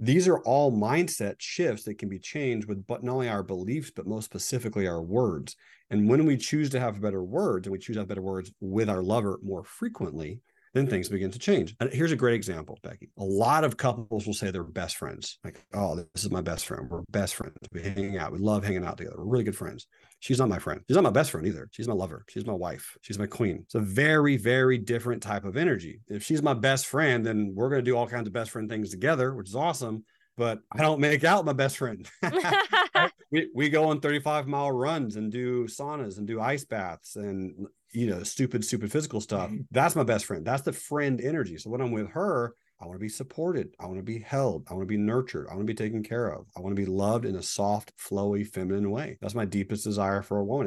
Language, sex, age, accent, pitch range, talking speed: English, male, 40-59, American, 100-130 Hz, 250 wpm